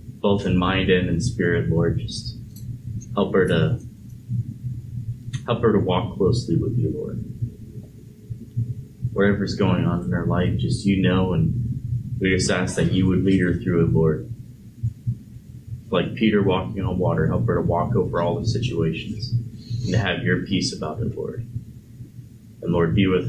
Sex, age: male, 30-49